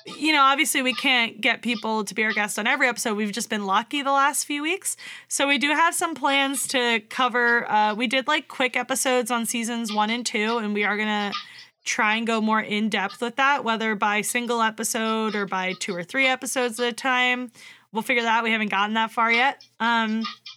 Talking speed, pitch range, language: 225 wpm, 210-250 Hz, English